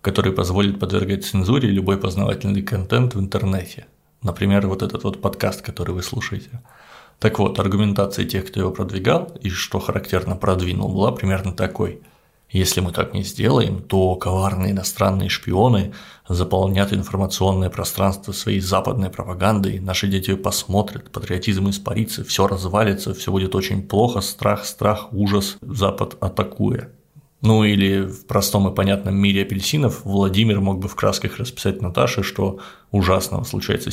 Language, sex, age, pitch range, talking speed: Russian, male, 30-49, 95-105 Hz, 140 wpm